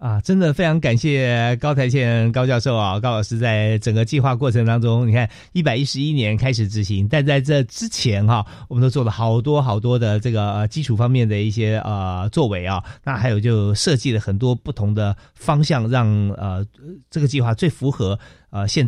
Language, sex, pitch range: Chinese, male, 110-140 Hz